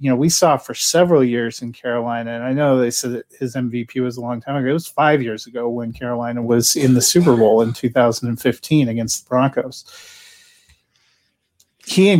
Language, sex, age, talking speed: English, male, 30-49, 200 wpm